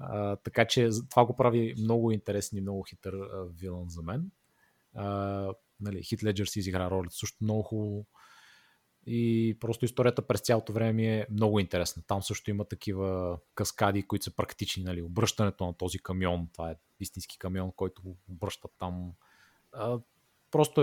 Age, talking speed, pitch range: 30-49, 160 wpm, 95-115 Hz